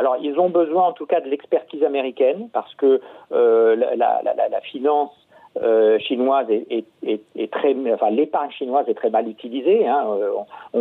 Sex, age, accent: male, 50-69, French